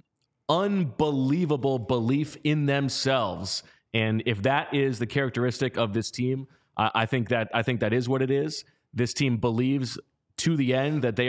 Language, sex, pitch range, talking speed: English, male, 115-140 Hz, 170 wpm